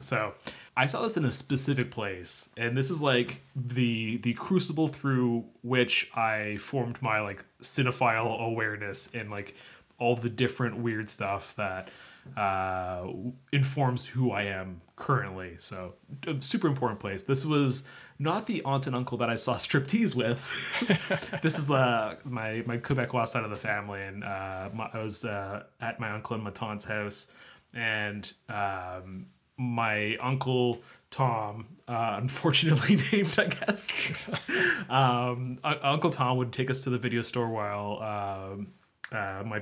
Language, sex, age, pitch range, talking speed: English, male, 20-39, 105-130 Hz, 155 wpm